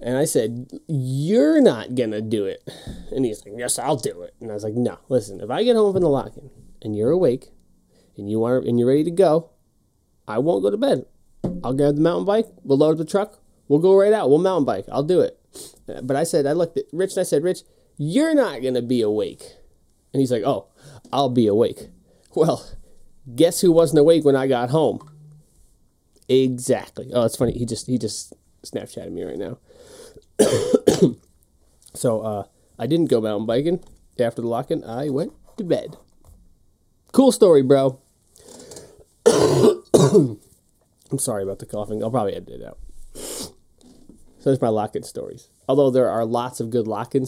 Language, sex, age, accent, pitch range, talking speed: English, male, 30-49, American, 110-165 Hz, 190 wpm